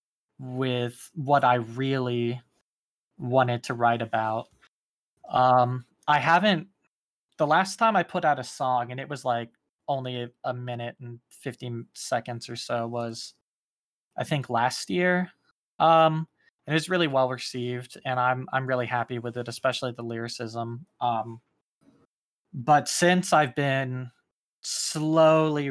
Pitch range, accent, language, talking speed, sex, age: 120-140 Hz, American, English, 135 wpm, male, 20-39